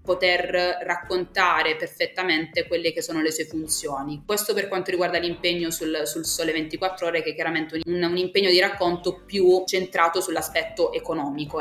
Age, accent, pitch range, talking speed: 20-39, native, 160-185 Hz, 160 wpm